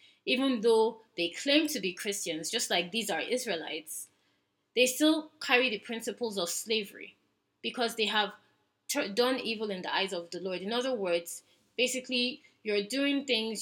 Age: 20-39